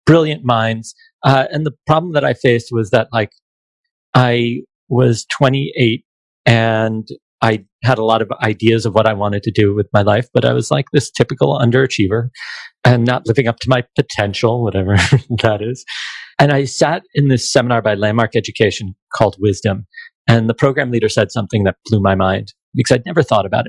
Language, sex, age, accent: English, male, 40-59, American